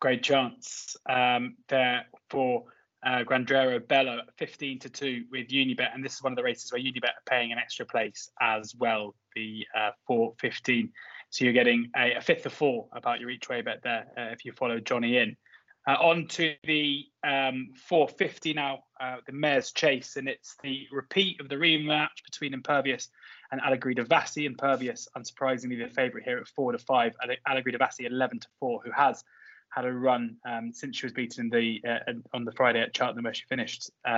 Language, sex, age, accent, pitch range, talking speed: English, male, 20-39, British, 120-140 Hz, 190 wpm